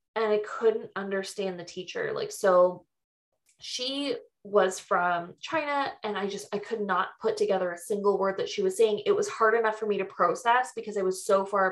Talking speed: 205 wpm